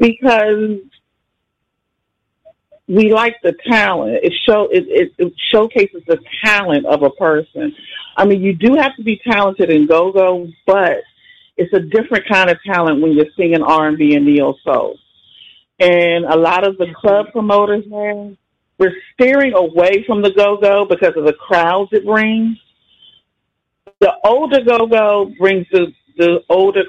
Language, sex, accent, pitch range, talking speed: English, female, American, 175-215 Hz, 145 wpm